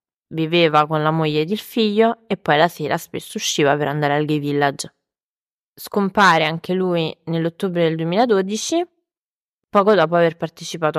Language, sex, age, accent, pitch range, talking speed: Italian, female, 20-39, native, 165-210 Hz, 155 wpm